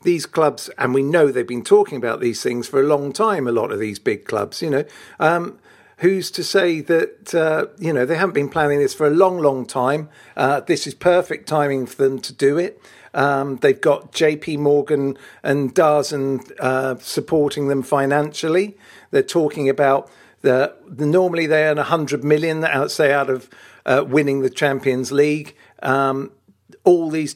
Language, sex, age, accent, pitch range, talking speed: English, male, 50-69, British, 135-175 Hz, 180 wpm